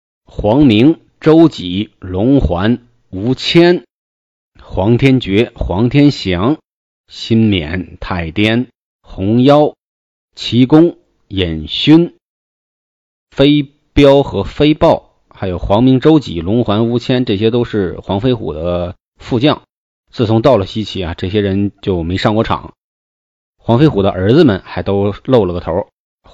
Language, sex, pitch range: Chinese, male, 95-130 Hz